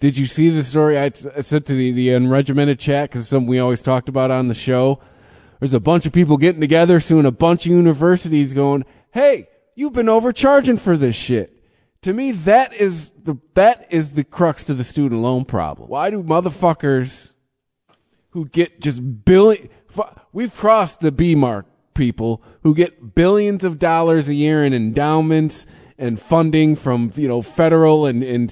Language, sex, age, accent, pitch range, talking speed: English, male, 20-39, American, 130-165 Hz, 185 wpm